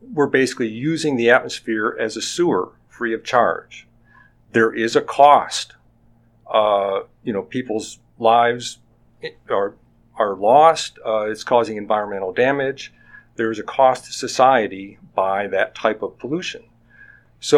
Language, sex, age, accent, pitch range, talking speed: English, male, 50-69, American, 110-130 Hz, 135 wpm